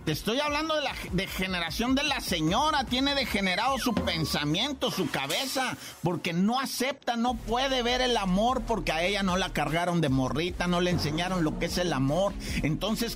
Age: 50-69